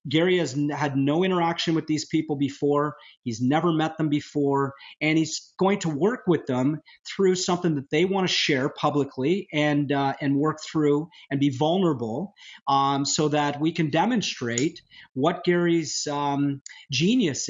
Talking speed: 160 wpm